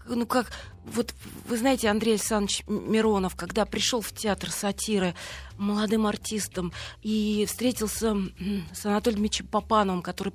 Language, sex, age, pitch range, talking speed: Russian, female, 30-49, 190-220 Hz, 130 wpm